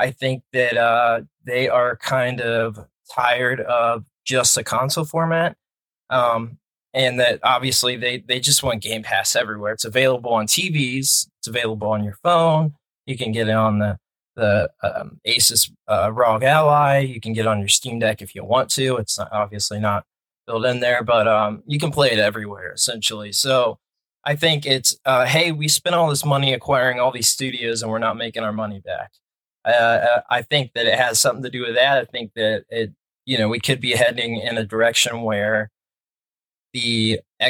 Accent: American